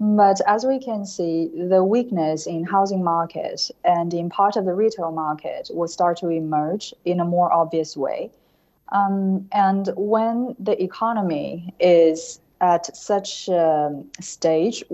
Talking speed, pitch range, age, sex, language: 145 wpm, 160-200 Hz, 20-39, female, English